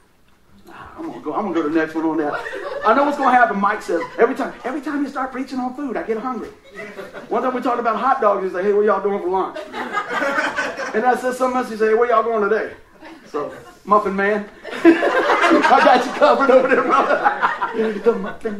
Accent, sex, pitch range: American, male, 170-260 Hz